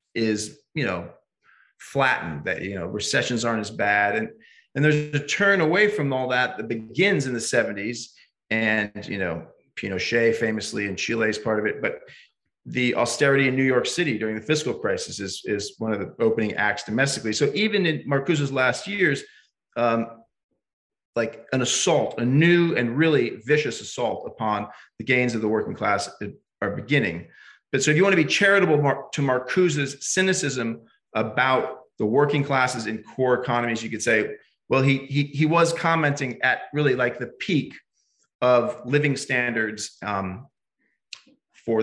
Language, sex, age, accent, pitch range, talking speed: English, male, 30-49, American, 110-145 Hz, 170 wpm